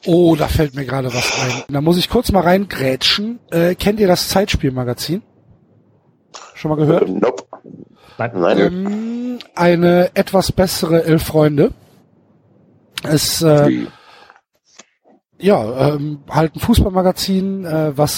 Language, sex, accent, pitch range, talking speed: German, male, German, 135-175 Hz, 120 wpm